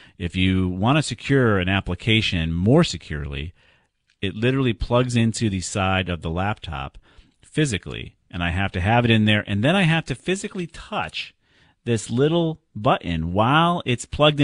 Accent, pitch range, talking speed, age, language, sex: American, 85-115 Hz, 165 wpm, 40-59, English, male